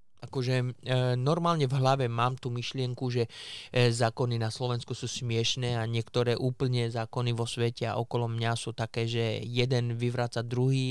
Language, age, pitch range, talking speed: Slovak, 20-39, 120-135 Hz, 155 wpm